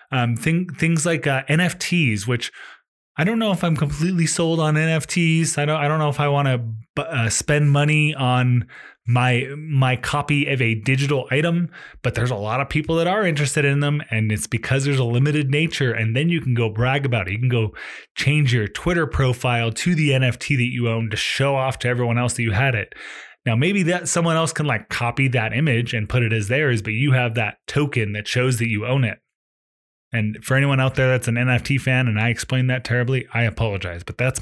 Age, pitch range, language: 20-39, 115-150 Hz, English